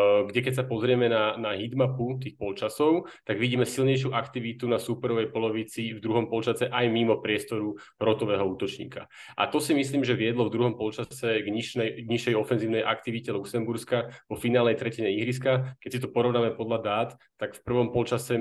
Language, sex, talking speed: Slovak, male, 175 wpm